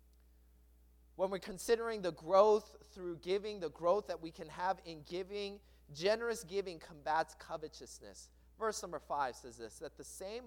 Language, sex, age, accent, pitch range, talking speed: English, male, 30-49, American, 180-255 Hz, 155 wpm